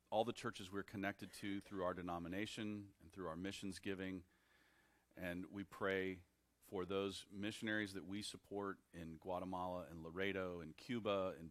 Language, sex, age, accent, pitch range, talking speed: English, male, 40-59, American, 85-110 Hz, 155 wpm